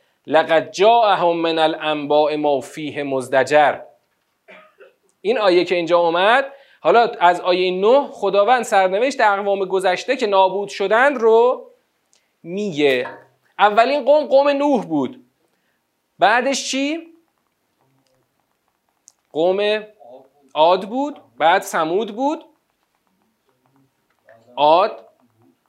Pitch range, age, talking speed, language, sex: 170-255 Hz, 40-59, 90 wpm, Persian, male